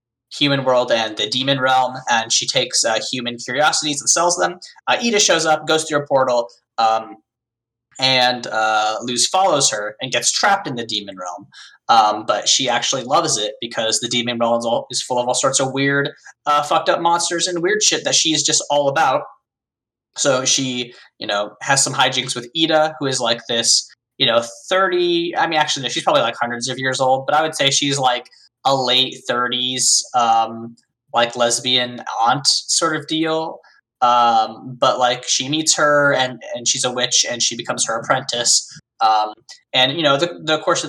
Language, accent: English, American